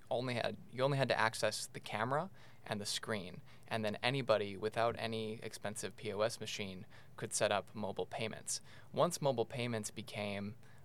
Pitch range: 105-120 Hz